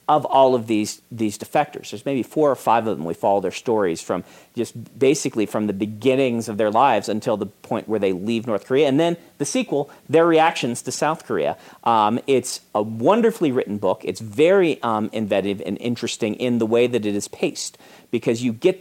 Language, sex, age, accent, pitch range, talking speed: English, male, 40-59, American, 110-150 Hz, 205 wpm